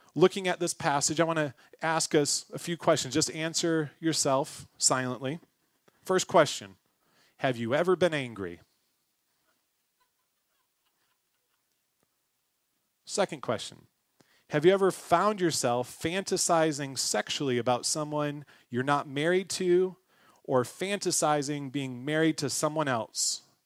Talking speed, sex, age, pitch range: 115 wpm, male, 30-49, 130-170 Hz